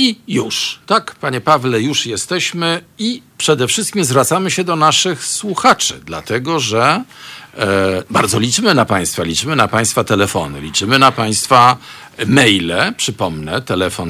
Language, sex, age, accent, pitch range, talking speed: Polish, male, 50-69, native, 90-150 Hz, 135 wpm